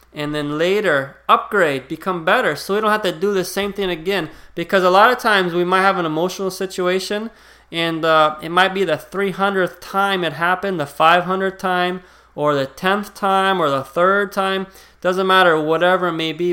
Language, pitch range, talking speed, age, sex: English, 155-195 Hz, 195 wpm, 20-39, male